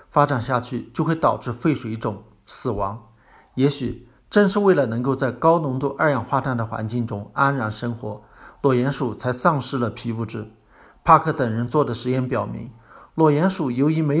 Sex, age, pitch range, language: male, 50-69, 115-150 Hz, Chinese